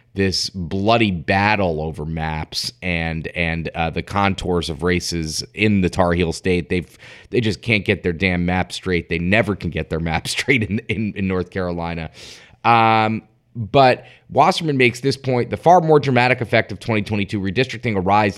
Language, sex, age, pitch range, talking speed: English, male, 30-49, 95-115 Hz, 185 wpm